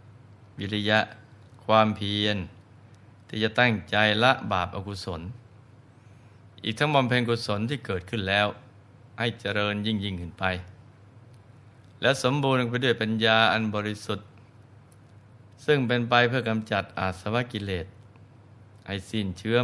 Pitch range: 100-115 Hz